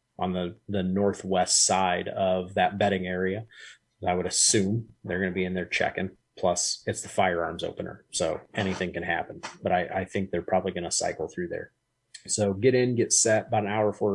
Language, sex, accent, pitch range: English, male, American, 95-110 Hz